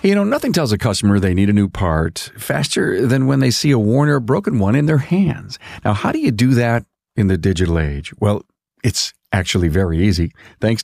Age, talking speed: 50-69, 220 wpm